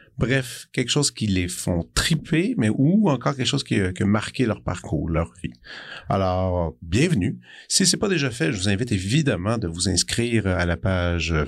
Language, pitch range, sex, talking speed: French, 90-120 Hz, male, 195 wpm